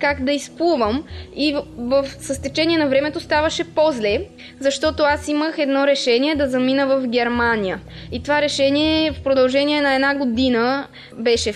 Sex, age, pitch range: female, 20-39, 235-300 Hz